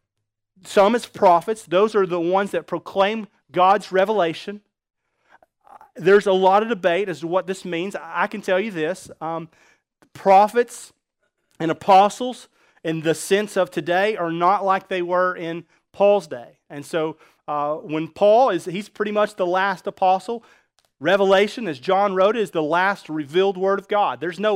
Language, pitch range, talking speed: English, 170-205 Hz, 165 wpm